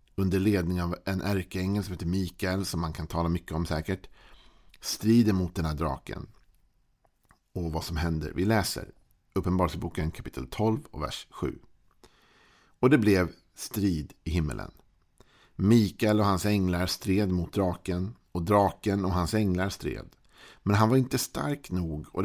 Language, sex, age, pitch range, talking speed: Swedish, male, 50-69, 85-105 Hz, 155 wpm